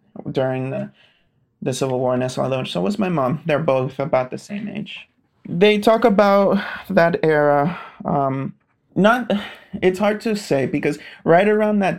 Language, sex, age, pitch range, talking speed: English, male, 30-49, 130-185 Hz, 160 wpm